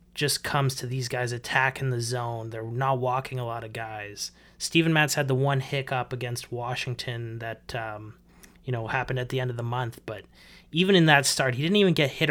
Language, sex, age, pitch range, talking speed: English, male, 20-39, 120-140 Hz, 215 wpm